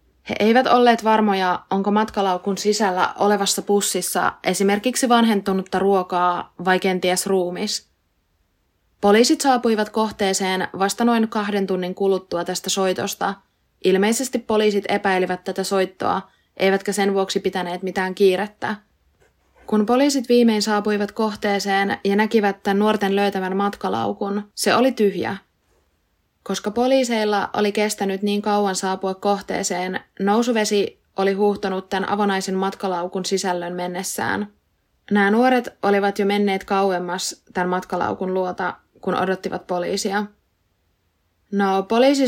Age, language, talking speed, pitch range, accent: 20-39, Finnish, 110 wpm, 185-205 Hz, native